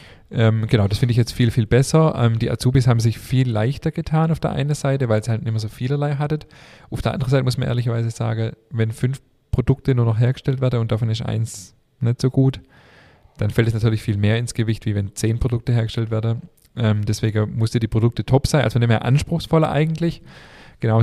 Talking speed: 225 wpm